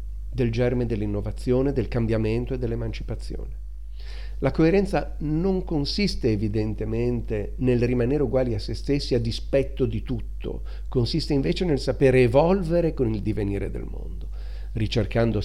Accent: native